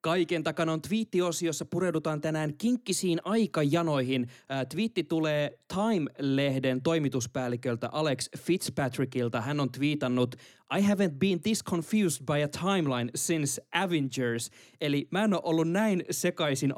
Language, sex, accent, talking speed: Finnish, male, native, 130 wpm